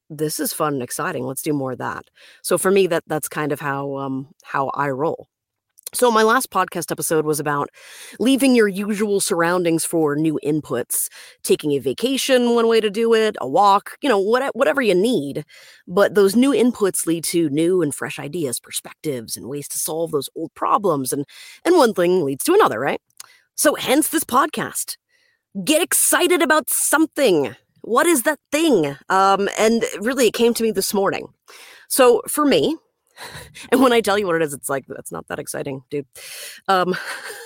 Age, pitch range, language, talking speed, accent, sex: 30-49, 160-260 Hz, English, 190 wpm, American, female